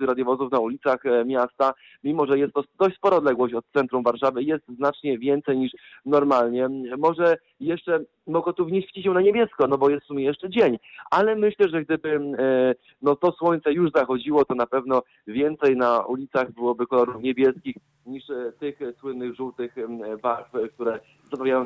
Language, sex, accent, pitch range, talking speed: Polish, male, native, 125-150 Hz, 165 wpm